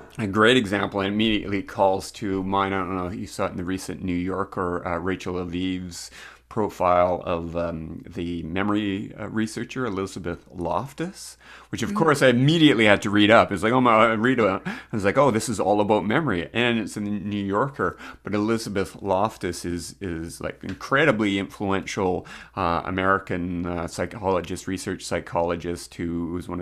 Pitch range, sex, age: 90-100 Hz, male, 30-49